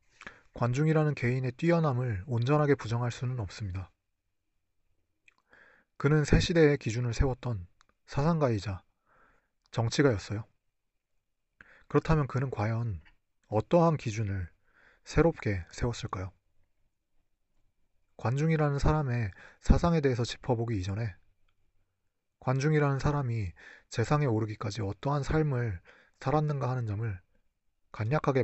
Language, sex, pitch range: Korean, male, 100-140 Hz